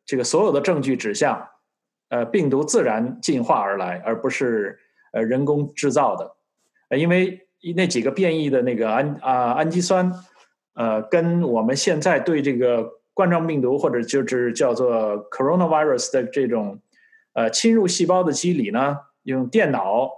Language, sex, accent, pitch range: Chinese, male, native, 120-180 Hz